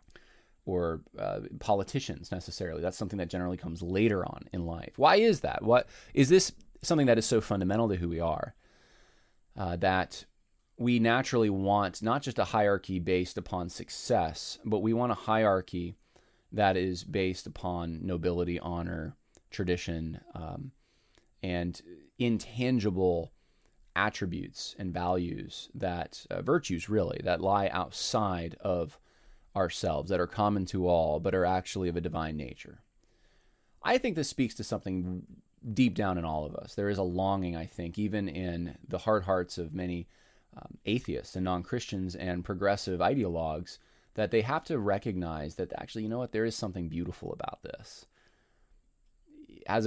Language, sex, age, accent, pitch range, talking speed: English, male, 20-39, American, 90-110 Hz, 150 wpm